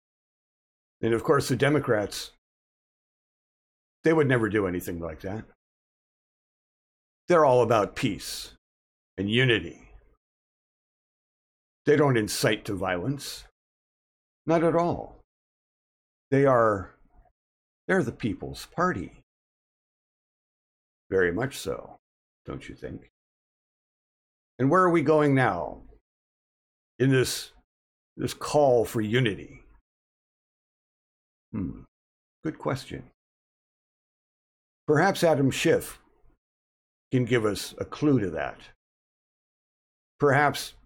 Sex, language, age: male, English, 50-69